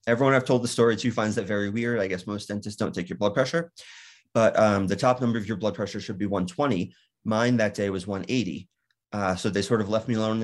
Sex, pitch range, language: male, 100-120 Hz, English